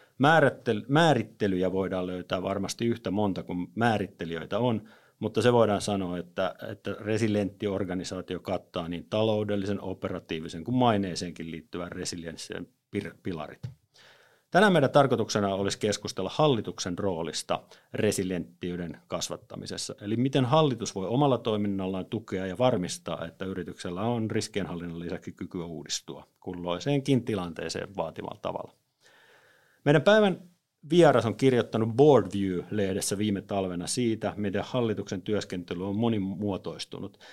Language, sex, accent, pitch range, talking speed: Finnish, male, native, 95-125 Hz, 110 wpm